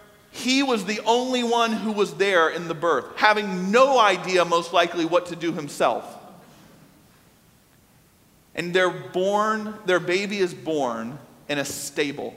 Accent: American